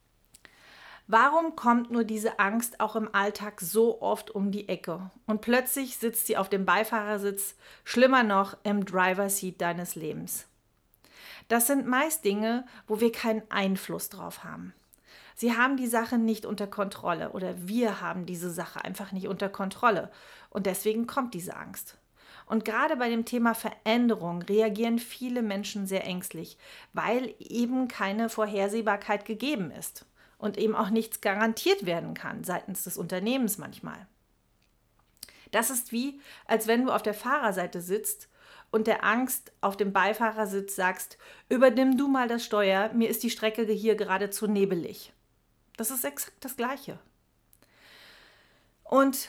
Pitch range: 195-235 Hz